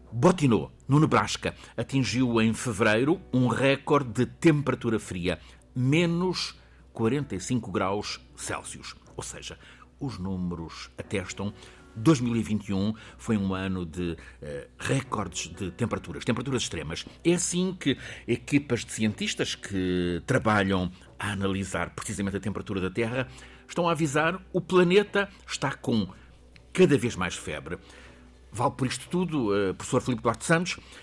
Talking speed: 130 wpm